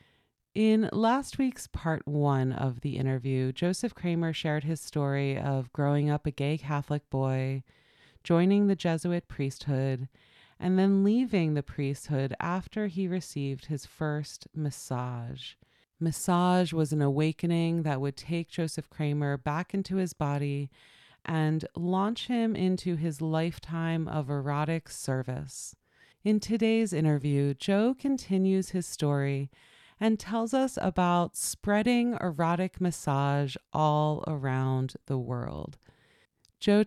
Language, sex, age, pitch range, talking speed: English, female, 30-49, 145-180 Hz, 125 wpm